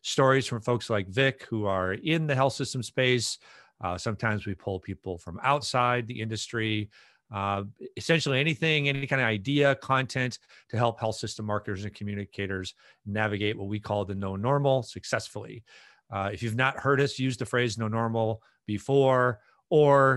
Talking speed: 170 wpm